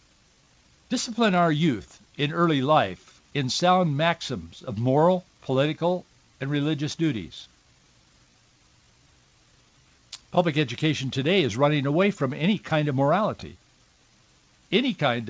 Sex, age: male, 60-79